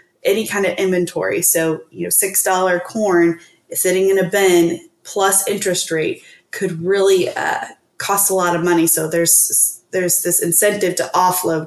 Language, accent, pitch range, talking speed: English, American, 180-225 Hz, 160 wpm